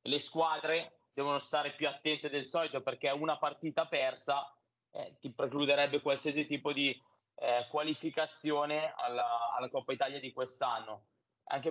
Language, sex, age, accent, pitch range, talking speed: Italian, male, 20-39, native, 135-165 Hz, 140 wpm